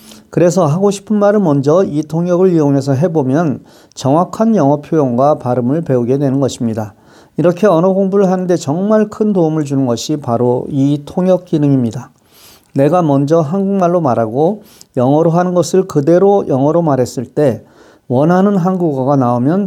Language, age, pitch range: Korean, 40-59, 130-175 Hz